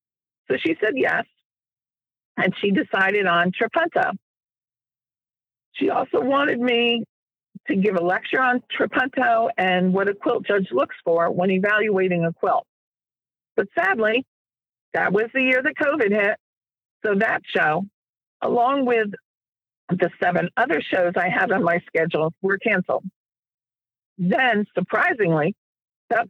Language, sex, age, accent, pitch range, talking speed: English, female, 50-69, American, 180-245 Hz, 130 wpm